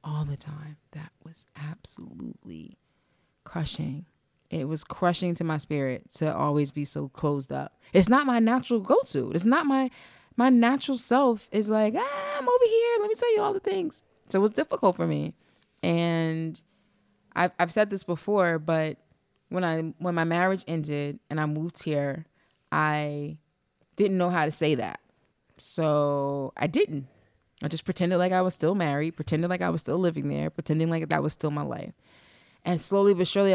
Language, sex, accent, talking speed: English, female, American, 185 wpm